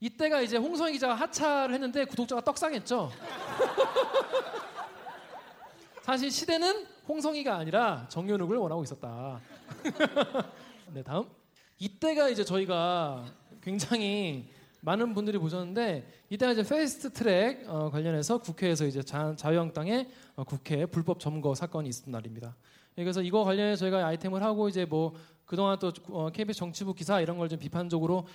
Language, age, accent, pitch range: Korean, 20-39, native, 160-245 Hz